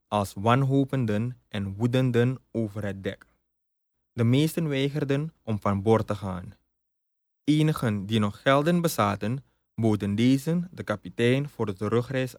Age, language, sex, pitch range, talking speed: 20-39, Dutch, male, 105-140 Hz, 130 wpm